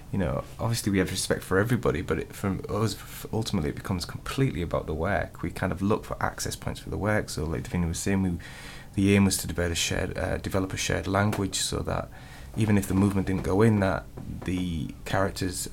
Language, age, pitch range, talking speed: English, 20-39, 95-110 Hz, 225 wpm